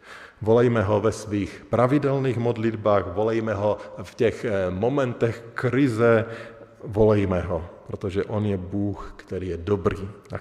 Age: 50-69